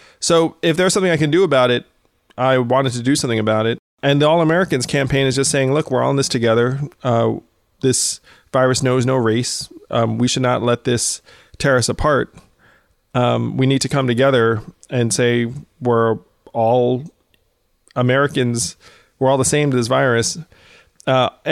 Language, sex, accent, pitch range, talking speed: English, male, American, 120-145 Hz, 175 wpm